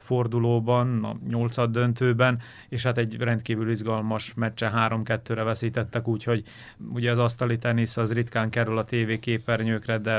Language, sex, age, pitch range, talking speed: Hungarian, male, 30-49, 110-120 Hz, 135 wpm